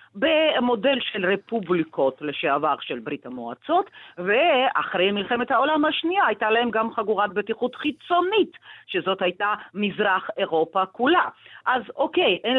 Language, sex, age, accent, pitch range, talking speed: Hebrew, female, 40-59, native, 185-275 Hz, 120 wpm